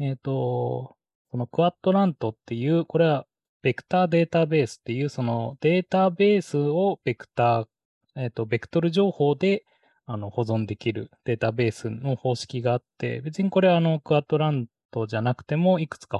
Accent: native